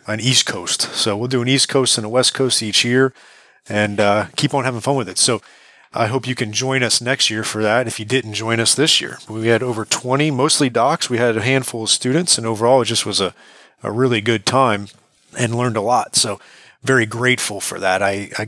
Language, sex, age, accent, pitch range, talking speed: English, male, 30-49, American, 105-125 Hz, 240 wpm